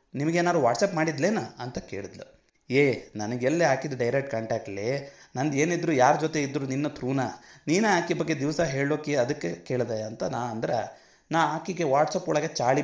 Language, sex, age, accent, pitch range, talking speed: Kannada, male, 30-49, native, 130-165 Hz, 145 wpm